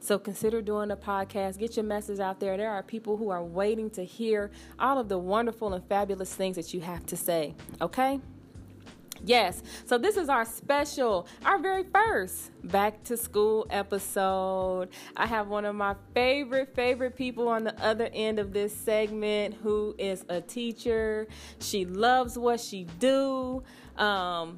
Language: English